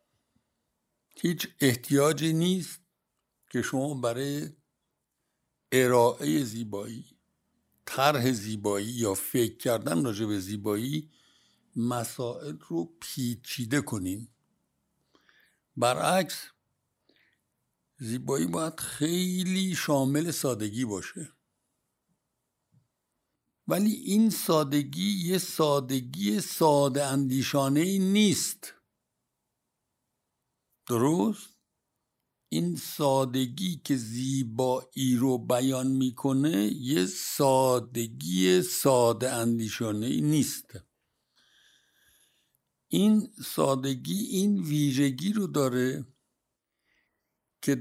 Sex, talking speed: male, 70 wpm